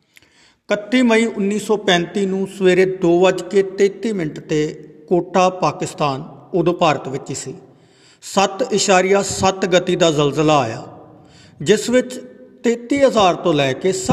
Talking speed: 110 wpm